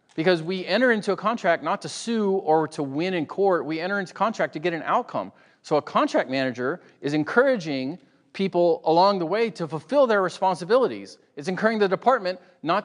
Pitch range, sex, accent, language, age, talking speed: 145-190 Hz, male, American, English, 40-59, 190 wpm